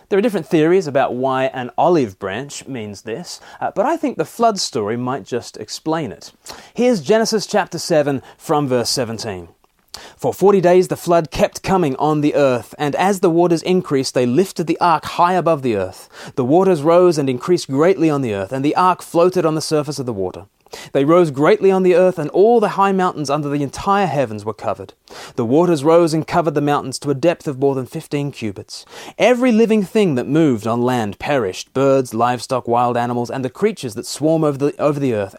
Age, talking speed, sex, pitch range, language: 30-49, 210 wpm, male, 125-175 Hz, English